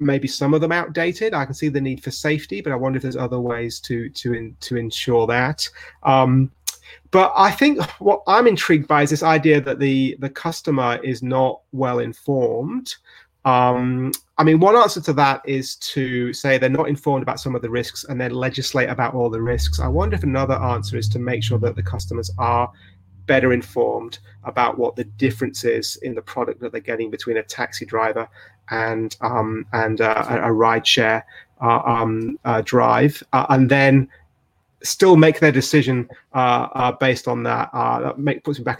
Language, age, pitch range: English, 30-49, 120-150 Hz